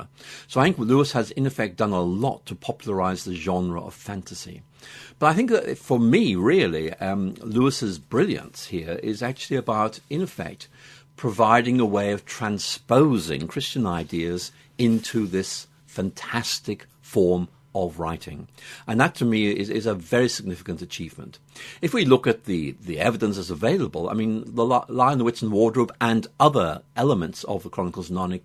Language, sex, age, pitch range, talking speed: English, male, 50-69, 95-125 Hz, 170 wpm